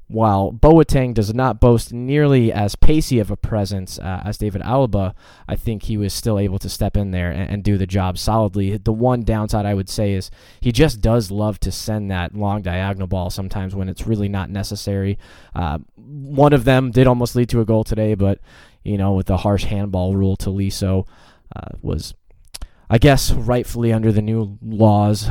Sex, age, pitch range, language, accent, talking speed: male, 20-39, 95-110 Hz, English, American, 195 wpm